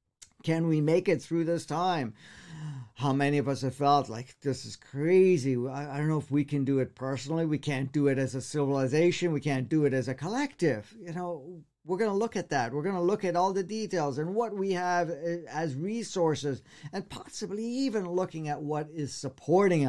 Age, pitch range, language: 50-69, 130-175 Hz, English